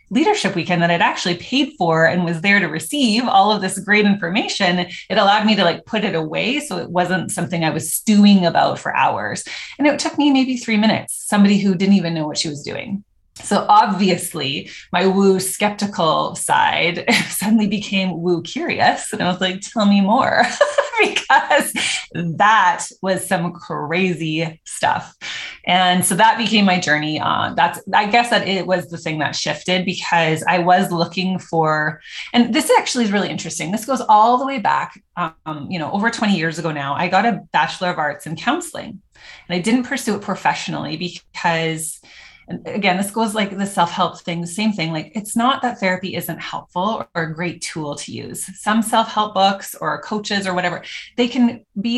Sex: female